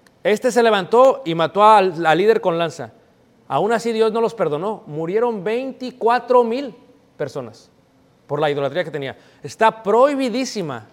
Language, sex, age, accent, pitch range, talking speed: Spanish, male, 40-59, Mexican, 140-225 Hz, 145 wpm